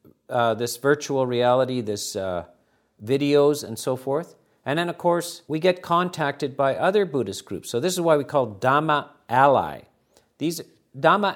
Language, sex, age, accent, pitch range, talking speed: English, male, 50-69, American, 135-165 Hz, 165 wpm